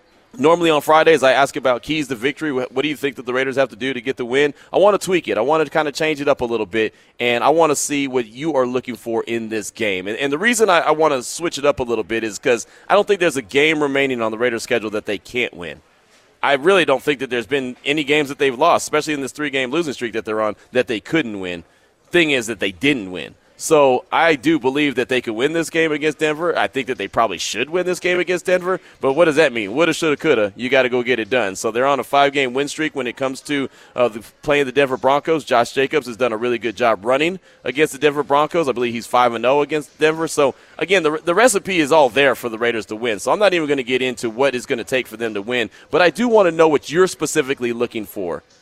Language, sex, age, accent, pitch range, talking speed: English, male, 30-49, American, 125-155 Hz, 280 wpm